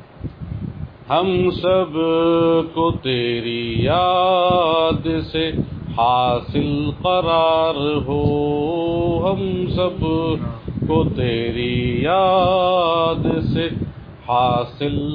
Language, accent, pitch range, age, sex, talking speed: English, Indian, 120-165 Hz, 50-69, male, 65 wpm